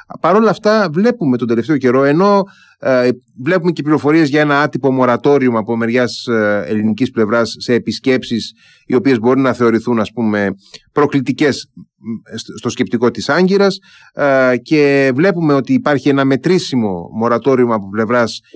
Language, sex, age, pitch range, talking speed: Greek, male, 30-49, 120-160 Hz, 140 wpm